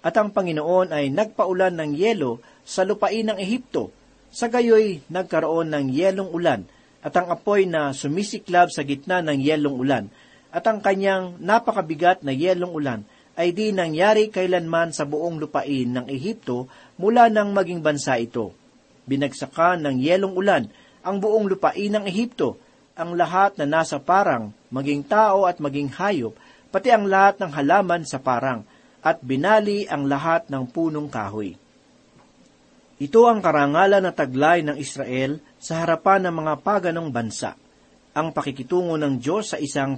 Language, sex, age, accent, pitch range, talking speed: Filipino, male, 40-59, native, 140-195 Hz, 150 wpm